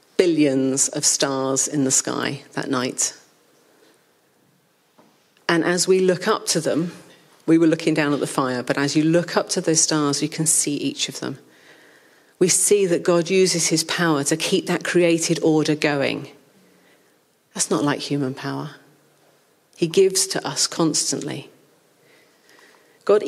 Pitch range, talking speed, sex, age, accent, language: 150-205 Hz, 155 wpm, female, 40-59, British, English